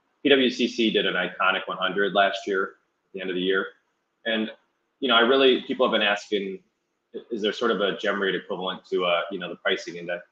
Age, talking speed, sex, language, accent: 30-49, 220 wpm, male, English, American